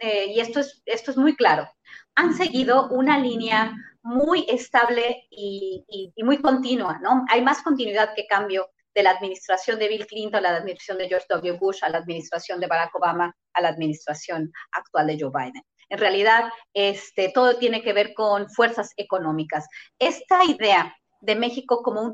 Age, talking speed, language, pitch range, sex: 30-49, 180 wpm, Spanish, 195-260 Hz, female